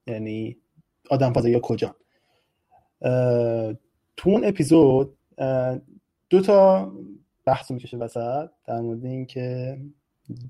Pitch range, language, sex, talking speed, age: 120-150 Hz, Persian, male, 95 wpm, 20-39